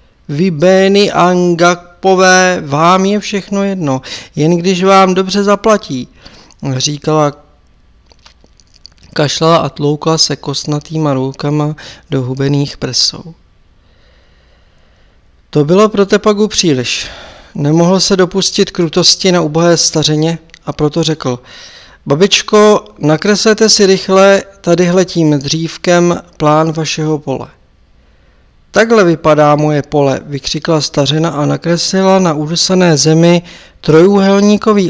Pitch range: 140-185 Hz